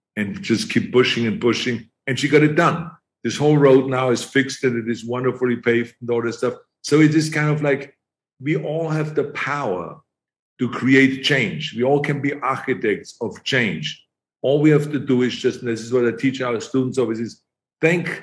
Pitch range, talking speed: 115-140 Hz, 215 wpm